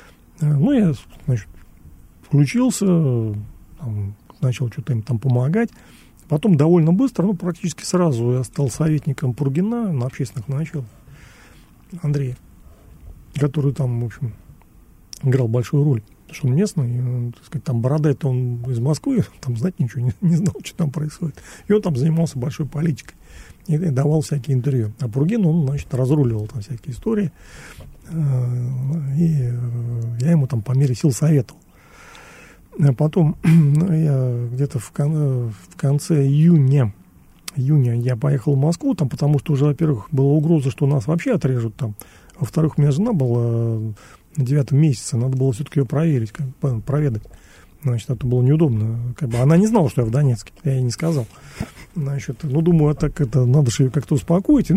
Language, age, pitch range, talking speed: Russian, 40-59, 125-155 Hz, 160 wpm